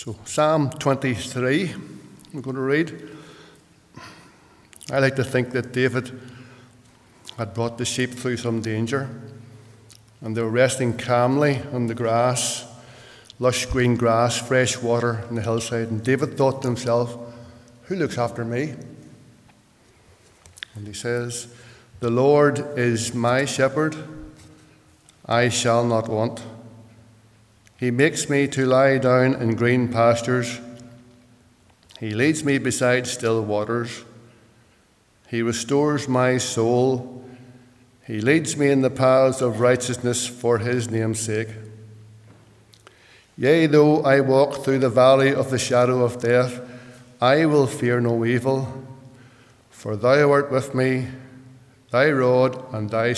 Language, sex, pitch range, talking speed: English, male, 115-130 Hz, 130 wpm